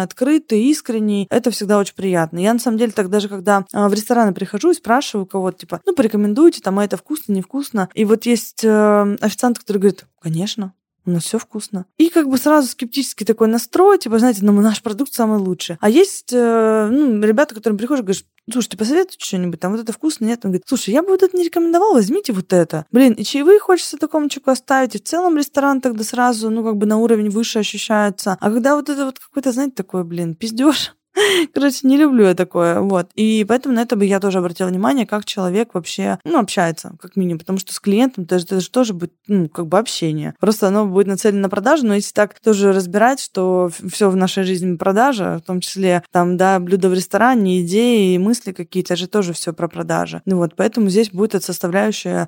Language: Russian